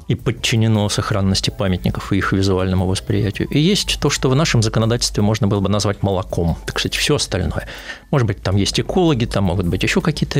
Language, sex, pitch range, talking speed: Russian, male, 100-135 Hz, 195 wpm